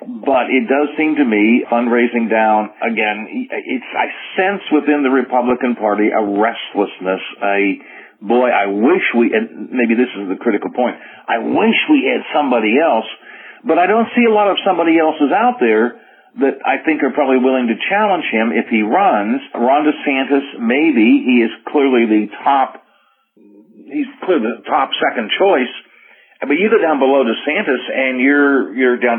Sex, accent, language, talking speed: male, American, English, 170 wpm